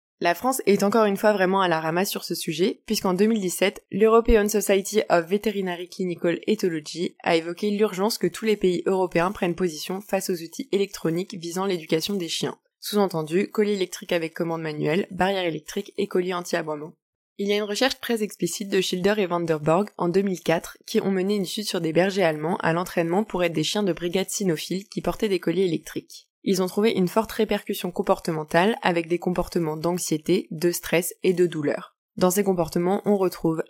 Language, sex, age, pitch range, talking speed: French, female, 20-39, 170-205 Hz, 190 wpm